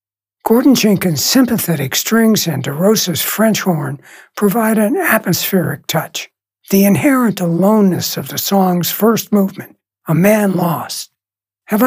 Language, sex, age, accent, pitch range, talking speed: English, male, 60-79, American, 160-215 Hz, 120 wpm